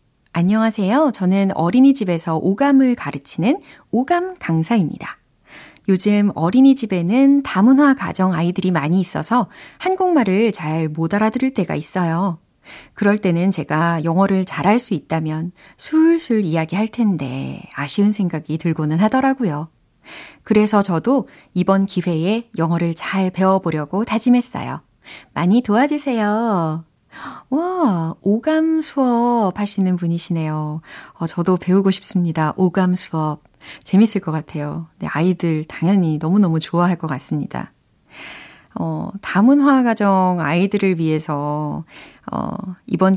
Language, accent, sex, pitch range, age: Korean, native, female, 160-215 Hz, 30-49